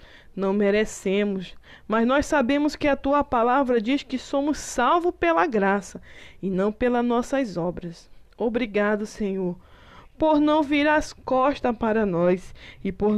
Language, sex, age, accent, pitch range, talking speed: Portuguese, female, 20-39, Brazilian, 195-260 Hz, 140 wpm